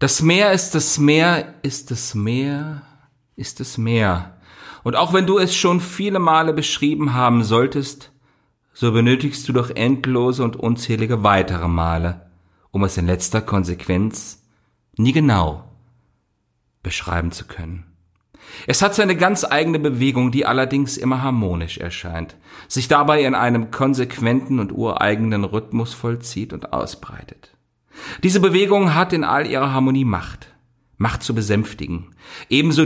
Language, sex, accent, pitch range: German, male, German, 95-140 Hz